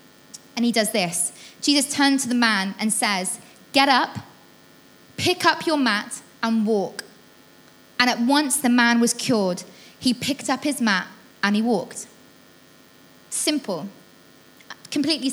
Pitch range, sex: 230-295 Hz, female